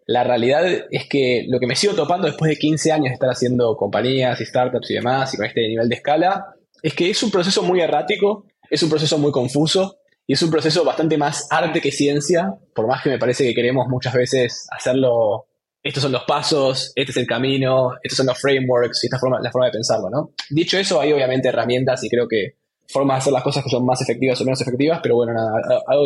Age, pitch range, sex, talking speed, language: 20-39, 125-165 Hz, male, 235 wpm, Spanish